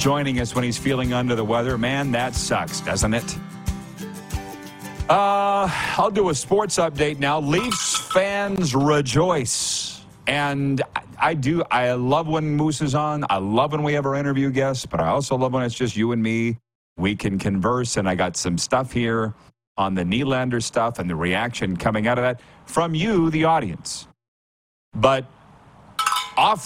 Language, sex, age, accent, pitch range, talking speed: English, male, 40-59, American, 115-155 Hz, 170 wpm